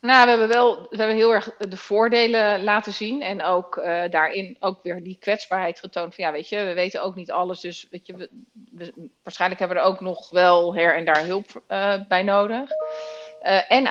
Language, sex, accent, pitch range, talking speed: Dutch, female, Dutch, 175-200 Hz, 220 wpm